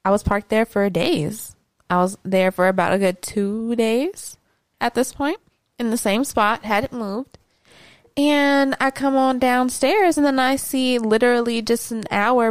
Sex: female